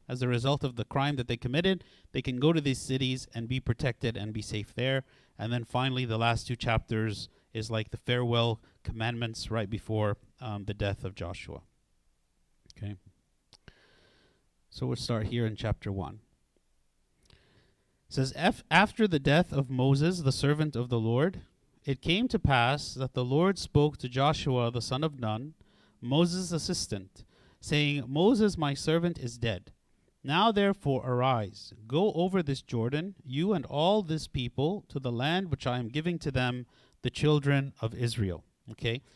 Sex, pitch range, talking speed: male, 115-150 Hz, 165 wpm